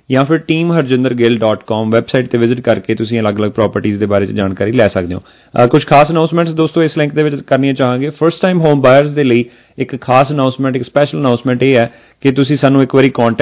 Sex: male